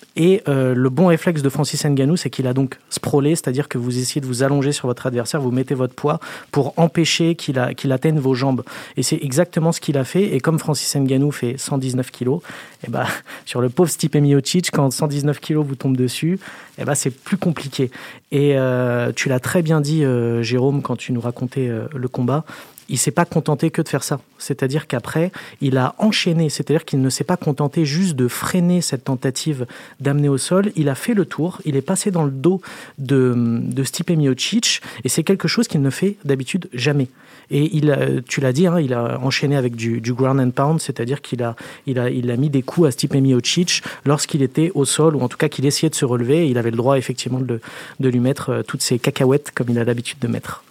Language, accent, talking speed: French, French, 230 wpm